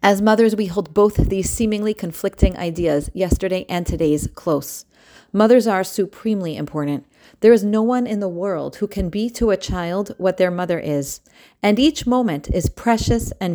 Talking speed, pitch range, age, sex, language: 175 wpm, 175-215 Hz, 30-49, female, English